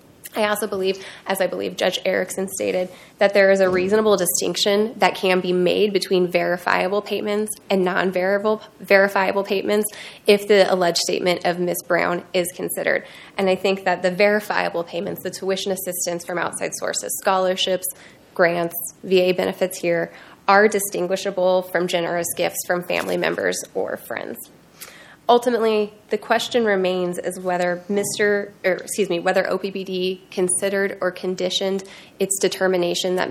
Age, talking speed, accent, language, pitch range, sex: 20-39, 145 wpm, American, English, 180-195 Hz, female